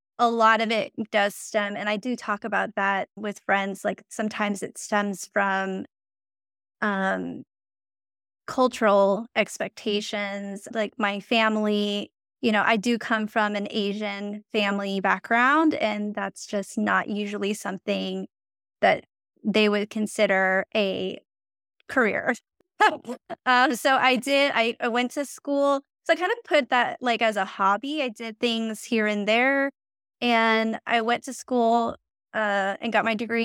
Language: English